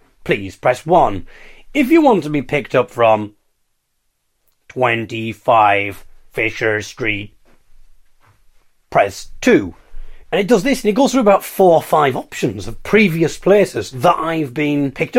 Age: 40-59